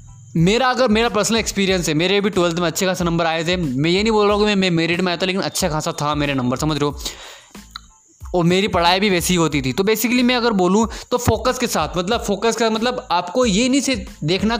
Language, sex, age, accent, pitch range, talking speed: Hindi, male, 20-39, native, 170-225 Hz, 240 wpm